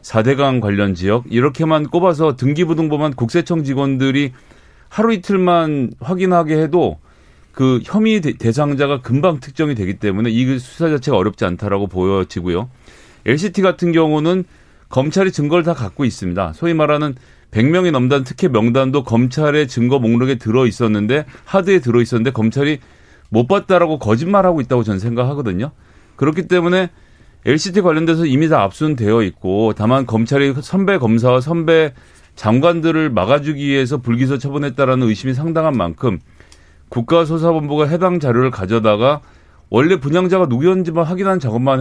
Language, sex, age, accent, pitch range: Korean, male, 30-49, native, 115-165 Hz